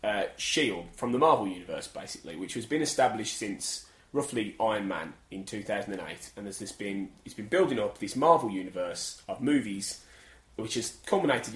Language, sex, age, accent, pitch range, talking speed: English, male, 20-39, British, 105-140 Hz, 170 wpm